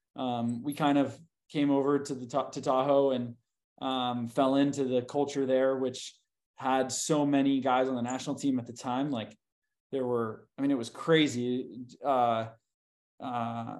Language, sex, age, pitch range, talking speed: English, male, 20-39, 125-145 Hz, 175 wpm